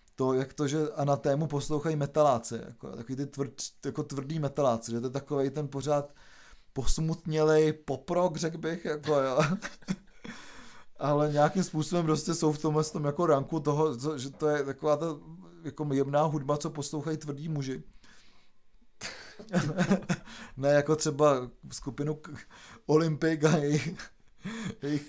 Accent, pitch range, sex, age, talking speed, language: native, 145-165 Hz, male, 30-49, 140 wpm, Czech